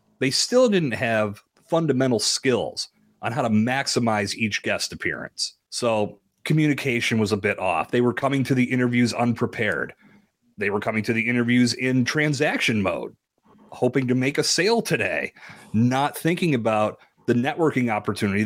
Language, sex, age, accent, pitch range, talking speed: English, male, 30-49, American, 110-145 Hz, 155 wpm